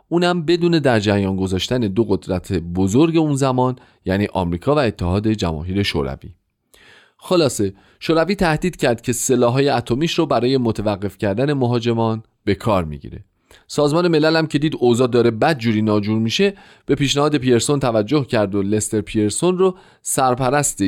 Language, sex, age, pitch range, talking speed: Persian, male, 40-59, 100-145 Hz, 140 wpm